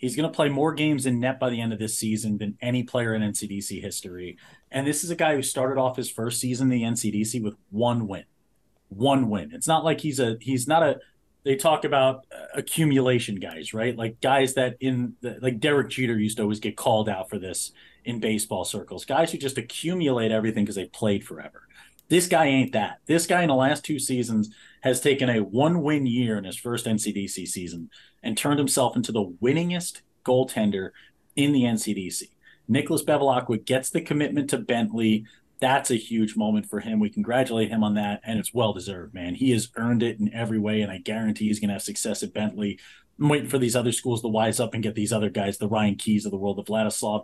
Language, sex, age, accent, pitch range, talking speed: English, male, 30-49, American, 105-135 Hz, 220 wpm